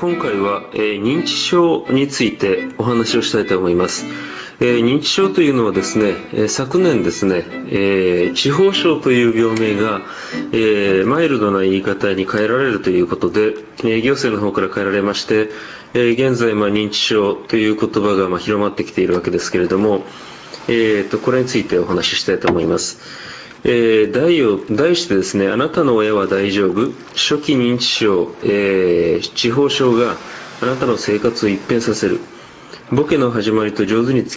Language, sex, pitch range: Japanese, male, 100-125 Hz